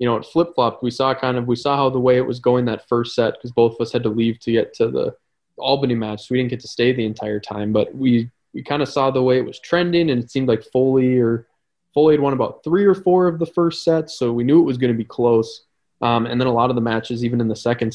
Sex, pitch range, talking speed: male, 115-130 Hz, 295 wpm